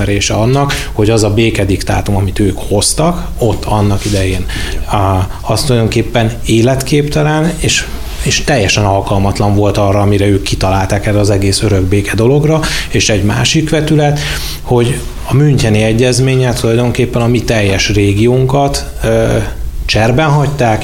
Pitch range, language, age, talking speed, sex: 100-120 Hz, Hungarian, 30-49, 125 wpm, male